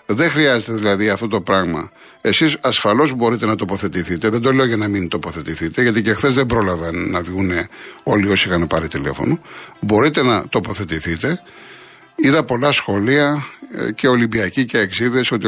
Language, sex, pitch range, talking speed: Greek, male, 100-135 Hz, 165 wpm